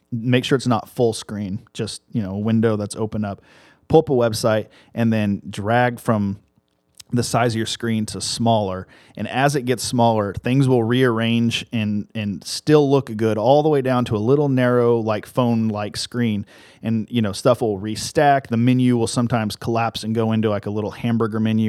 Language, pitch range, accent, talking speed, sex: English, 105-120 Hz, American, 200 wpm, male